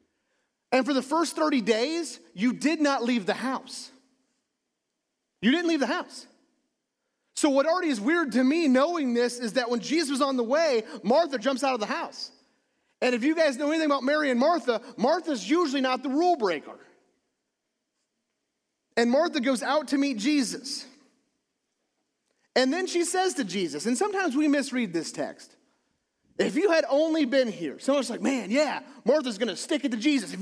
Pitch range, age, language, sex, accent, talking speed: 250-310 Hz, 30-49, English, male, American, 185 wpm